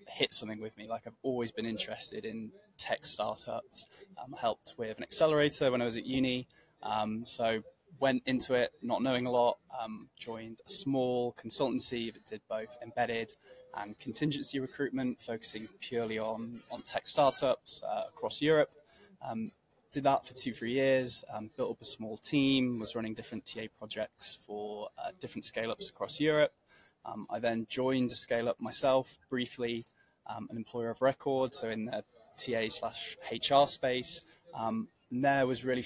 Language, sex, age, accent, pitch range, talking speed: English, male, 20-39, British, 115-135 Hz, 165 wpm